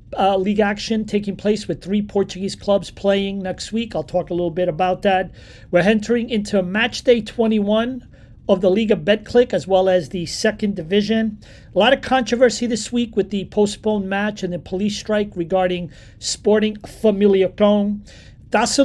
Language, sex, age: English, male, 40-59